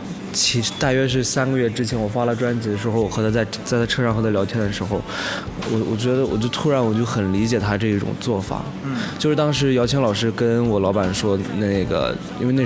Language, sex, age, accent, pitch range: Chinese, male, 20-39, native, 100-130 Hz